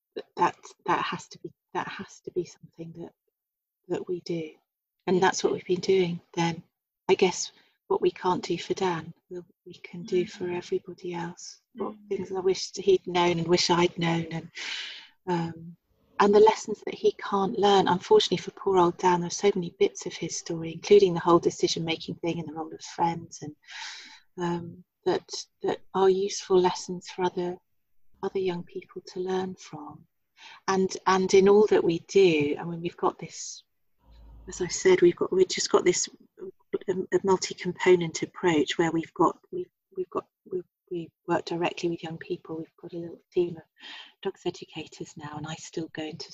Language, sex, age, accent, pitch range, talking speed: English, female, 30-49, British, 170-210 Hz, 190 wpm